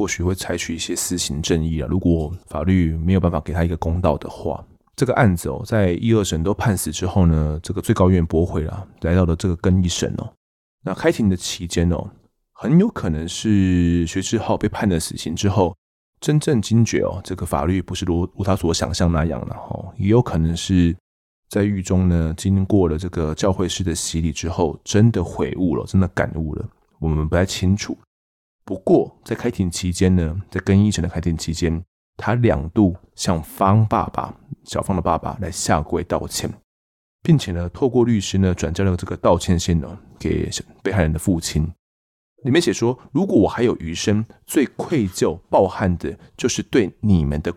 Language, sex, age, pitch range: Chinese, male, 20-39, 80-100 Hz